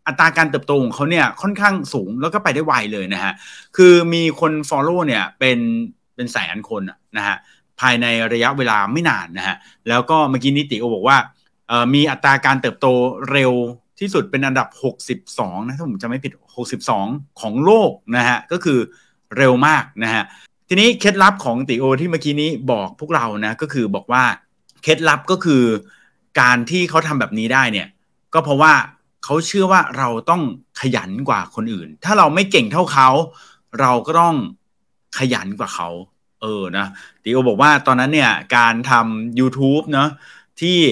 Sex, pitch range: male, 120-160 Hz